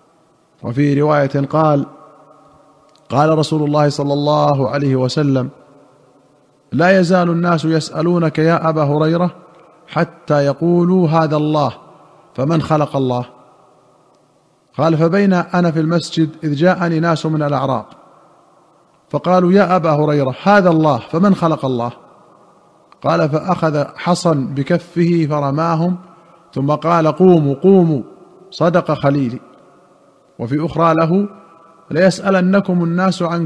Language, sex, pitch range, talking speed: Arabic, male, 150-170 Hz, 110 wpm